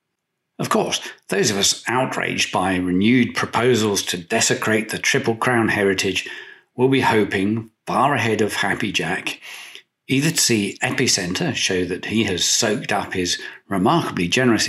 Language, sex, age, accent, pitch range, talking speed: English, male, 50-69, British, 95-125 Hz, 145 wpm